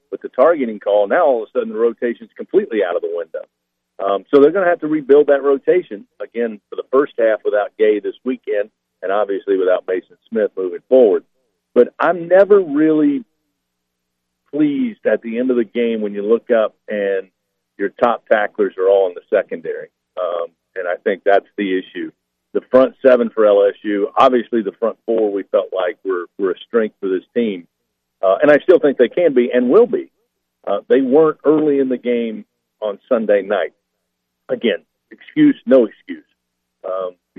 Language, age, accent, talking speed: English, 50-69, American, 190 wpm